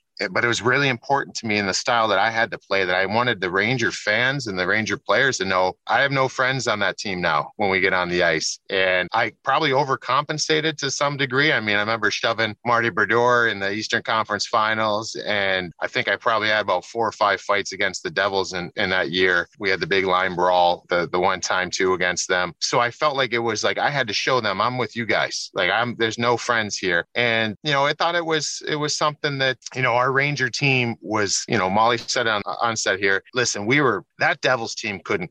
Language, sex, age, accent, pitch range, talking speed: English, male, 30-49, American, 95-125 Hz, 250 wpm